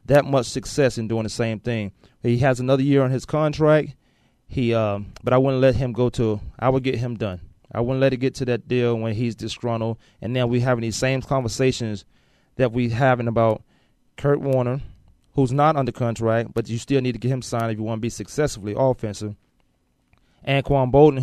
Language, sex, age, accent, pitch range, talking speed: English, male, 30-49, American, 115-140 Hz, 215 wpm